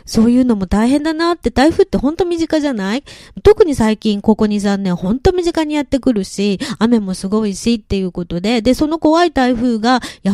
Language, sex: Japanese, female